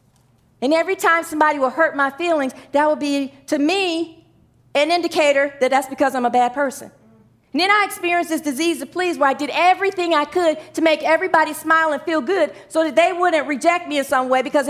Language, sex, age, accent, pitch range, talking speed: English, female, 40-59, American, 255-340 Hz, 215 wpm